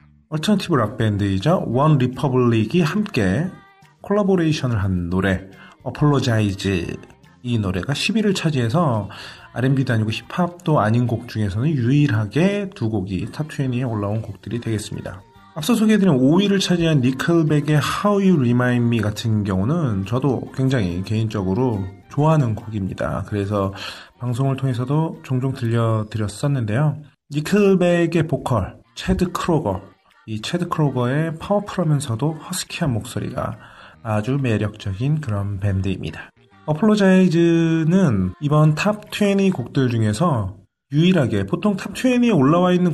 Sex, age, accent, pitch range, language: male, 30-49, native, 110-175 Hz, Korean